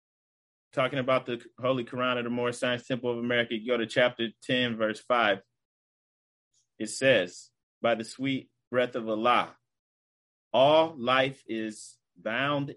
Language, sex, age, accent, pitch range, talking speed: English, male, 30-49, American, 110-130 Hz, 145 wpm